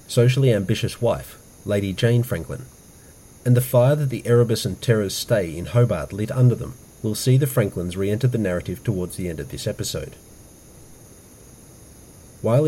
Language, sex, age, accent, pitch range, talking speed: English, male, 40-59, Australian, 95-125 Hz, 160 wpm